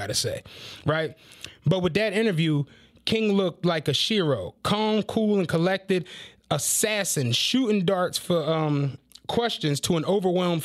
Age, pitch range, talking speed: 20-39, 150-185 Hz, 140 wpm